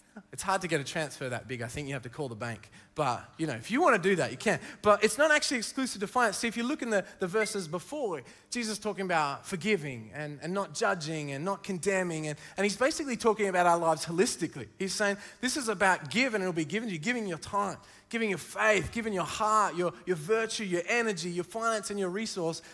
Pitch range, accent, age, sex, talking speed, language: 160-215 Hz, Australian, 20-39, male, 245 wpm, English